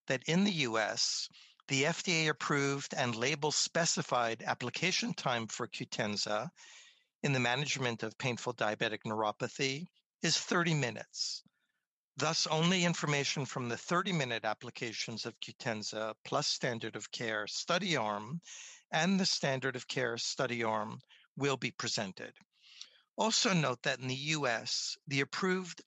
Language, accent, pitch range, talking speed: English, American, 120-170 Hz, 130 wpm